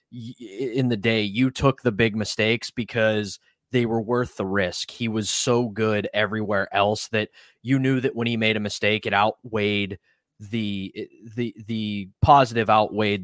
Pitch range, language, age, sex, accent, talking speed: 105-125 Hz, English, 20-39, male, American, 165 wpm